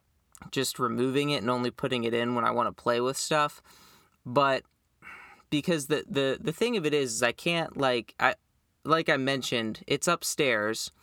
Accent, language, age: American, English, 20-39